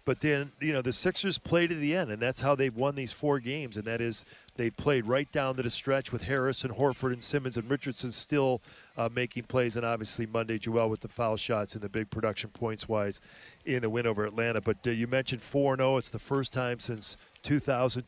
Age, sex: 40-59, male